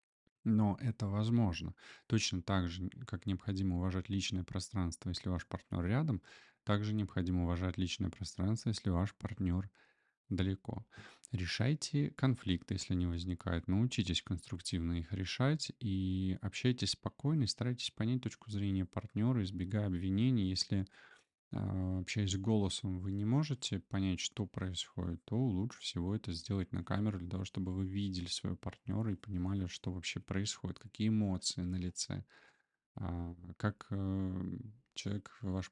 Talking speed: 135 wpm